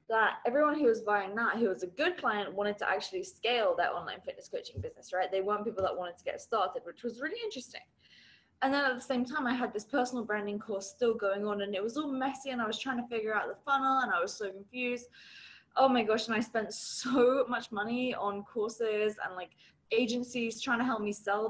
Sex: female